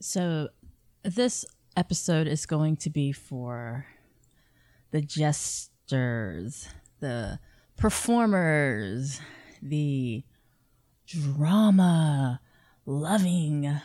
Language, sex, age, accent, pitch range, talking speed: English, female, 20-39, American, 130-170 Hz, 60 wpm